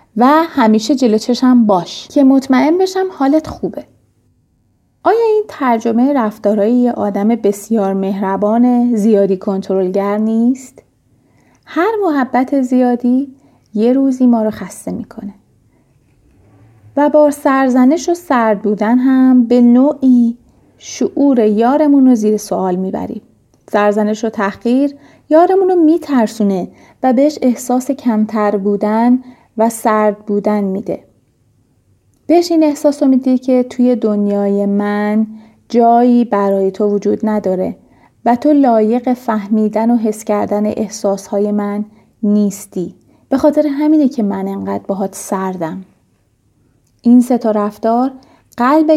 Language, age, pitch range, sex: Arabic, 30-49, 200-255 Hz, female